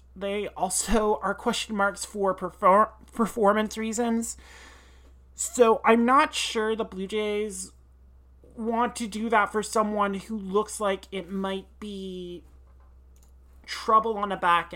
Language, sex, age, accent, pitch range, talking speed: English, male, 30-49, American, 175-220 Hz, 130 wpm